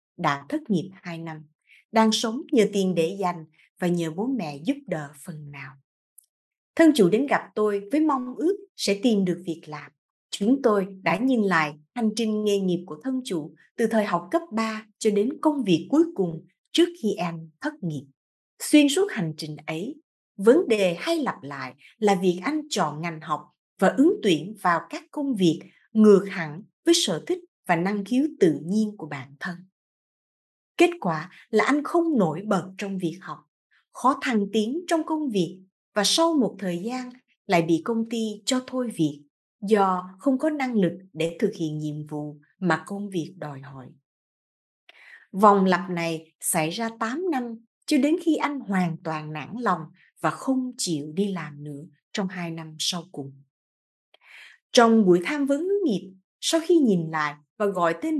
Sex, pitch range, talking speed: female, 165-250 Hz, 185 wpm